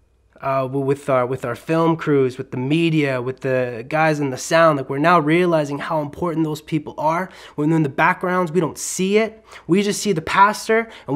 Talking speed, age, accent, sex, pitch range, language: 210 wpm, 20-39, American, male, 130-165 Hz, English